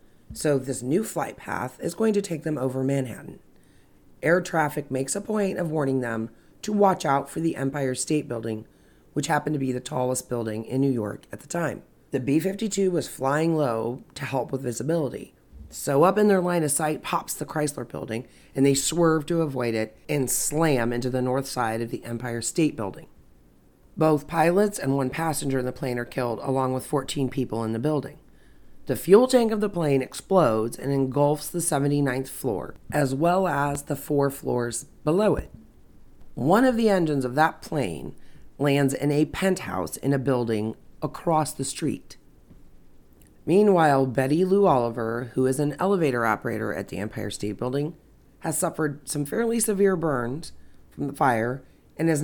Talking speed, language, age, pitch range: 180 wpm, English, 30-49, 125-160 Hz